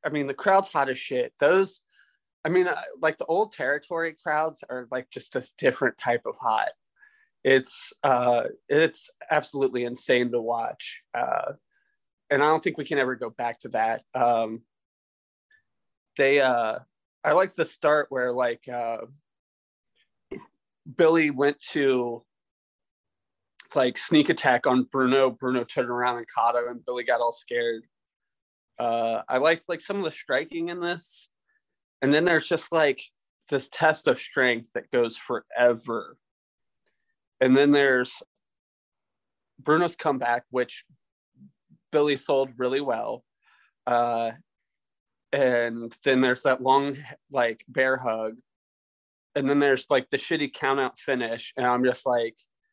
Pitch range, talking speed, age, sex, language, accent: 120-165 Hz, 140 wpm, 20-39, male, English, American